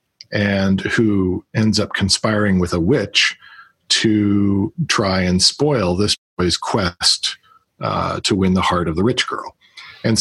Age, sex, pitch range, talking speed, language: 40-59, male, 95-115 Hz, 145 wpm, English